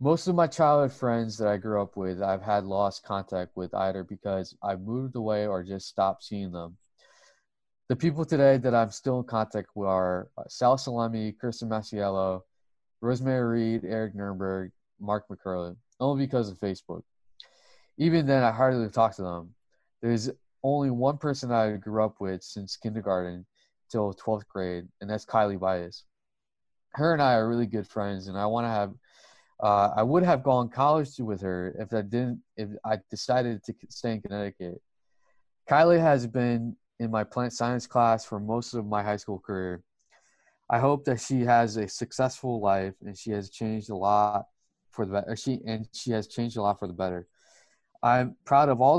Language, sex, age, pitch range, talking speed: English, male, 20-39, 100-120 Hz, 185 wpm